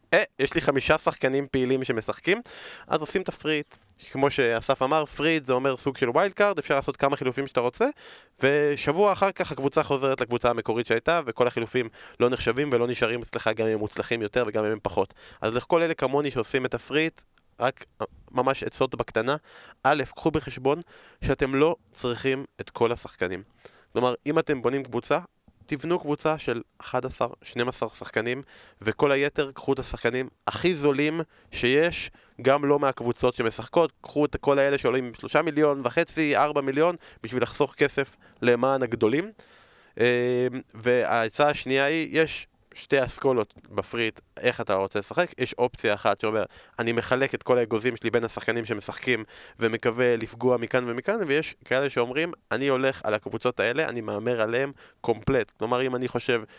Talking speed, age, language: 160 wpm, 20-39, Hebrew